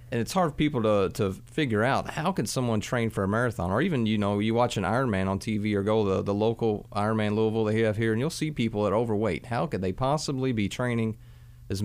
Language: English